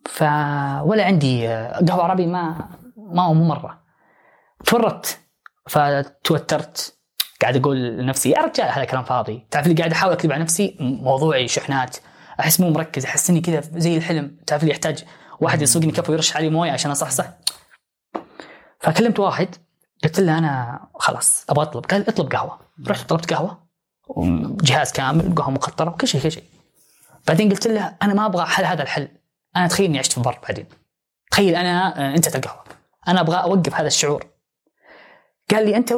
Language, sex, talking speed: Arabic, female, 160 wpm